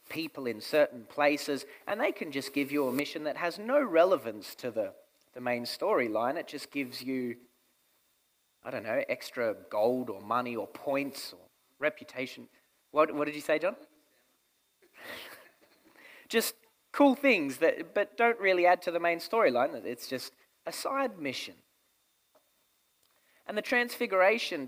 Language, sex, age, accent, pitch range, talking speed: English, male, 30-49, Australian, 120-170 Hz, 150 wpm